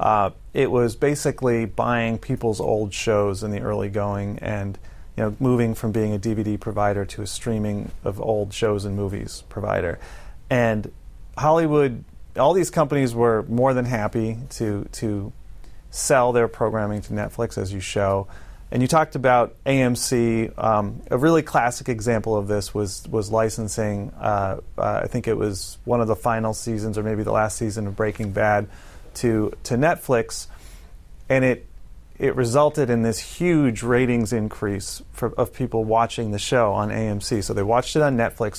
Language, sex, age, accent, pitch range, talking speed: English, male, 30-49, American, 105-130 Hz, 170 wpm